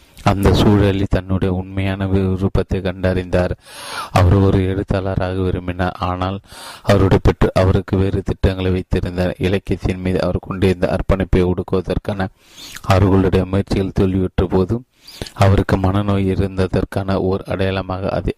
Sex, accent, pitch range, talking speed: male, native, 95-100 Hz, 110 wpm